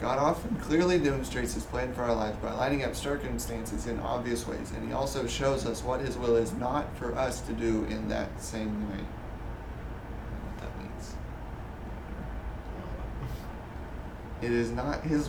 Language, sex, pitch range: English, male, 110-120 Hz